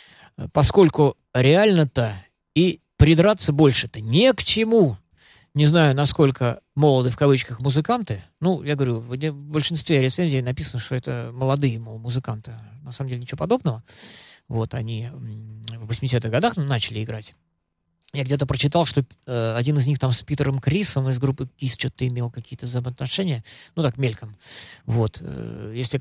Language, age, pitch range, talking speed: Russian, 20-39, 120-155 Hz, 140 wpm